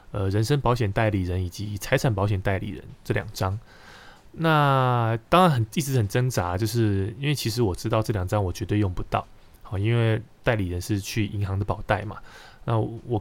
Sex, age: male, 20-39